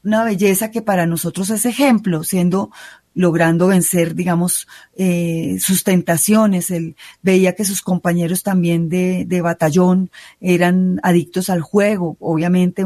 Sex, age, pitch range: female, 30-49, 175-200 Hz